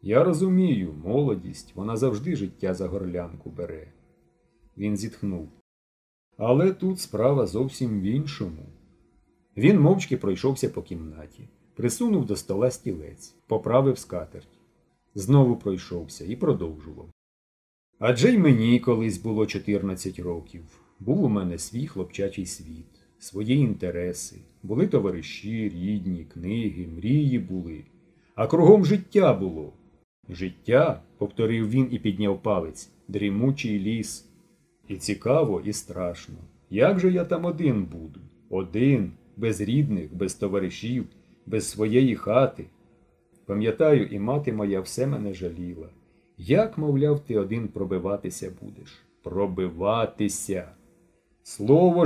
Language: Ukrainian